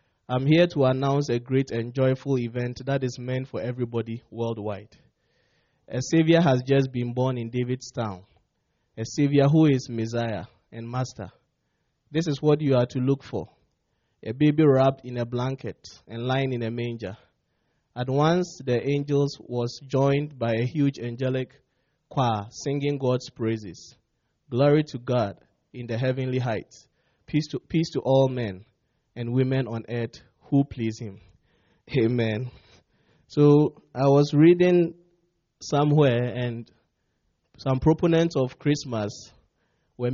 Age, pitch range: 20-39, 120-140 Hz